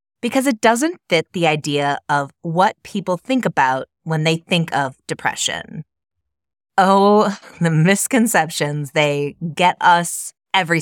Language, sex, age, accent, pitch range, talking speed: English, female, 30-49, American, 145-200 Hz, 130 wpm